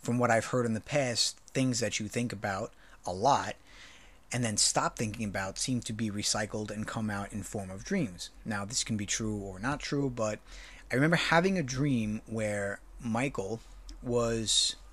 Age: 30-49